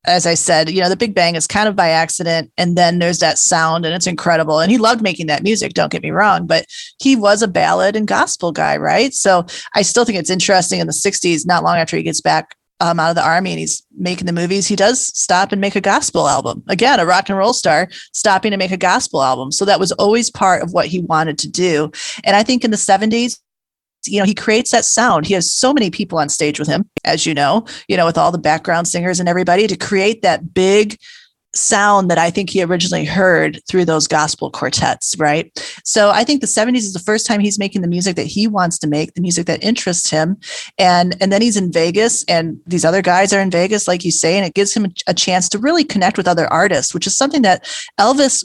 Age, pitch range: 30-49, 170-215 Hz